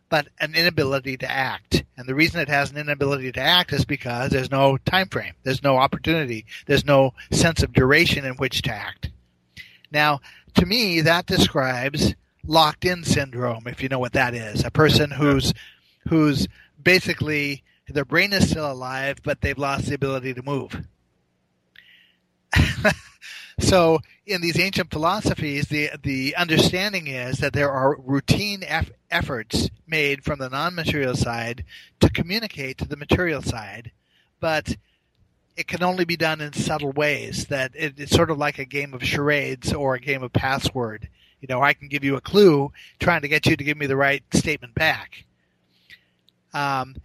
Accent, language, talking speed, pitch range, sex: American, English, 170 wpm, 125-155 Hz, male